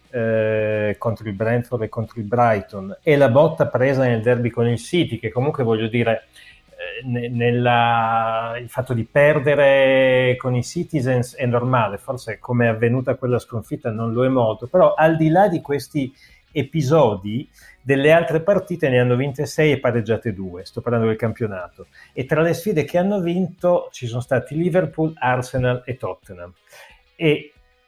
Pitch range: 115-150 Hz